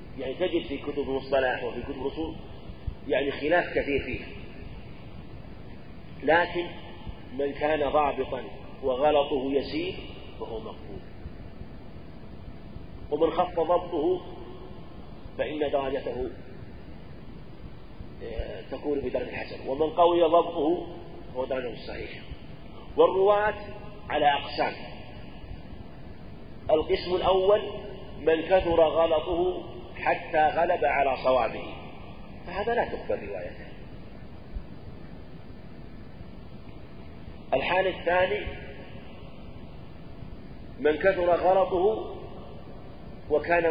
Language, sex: Arabic, male